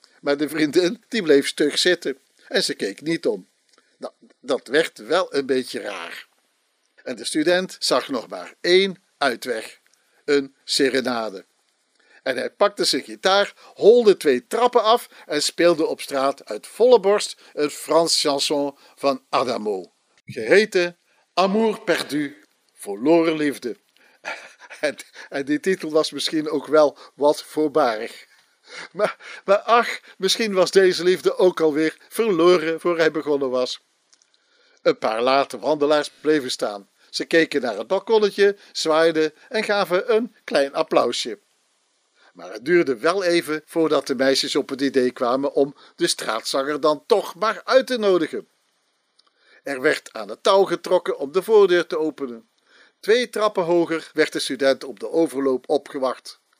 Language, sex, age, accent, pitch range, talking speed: Dutch, male, 60-79, Dutch, 145-195 Hz, 145 wpm